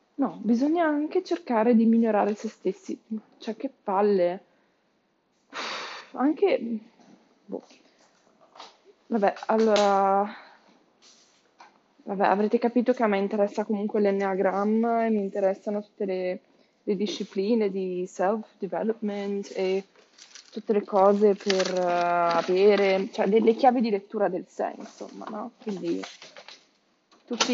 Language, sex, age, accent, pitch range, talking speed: Italian, female, 20-39, native, 195-245 Hz, 115 wpm